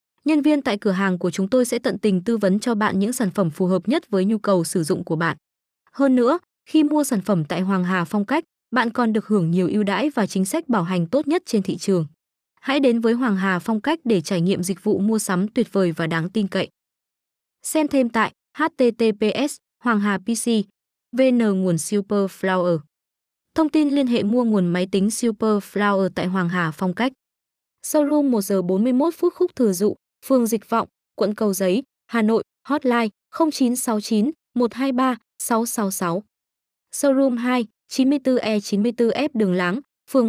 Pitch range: 200-260 Hz